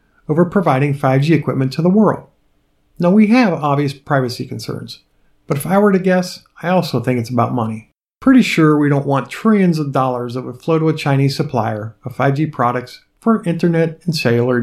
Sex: male